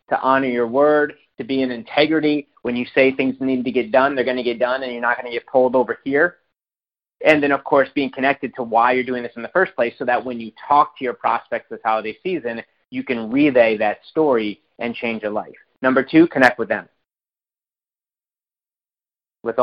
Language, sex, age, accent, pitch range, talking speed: English, male, 30-49, American, 120-140 Hz, 215 wpm